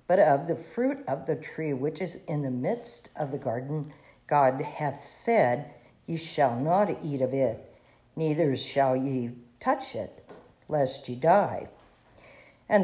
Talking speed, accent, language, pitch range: 155 wpm, American, English, 130-170 Hz